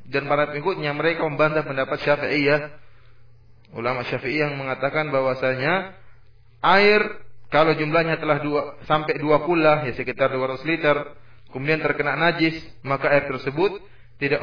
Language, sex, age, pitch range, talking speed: English, male, 30-49, 120-165 Hz, 135 wpm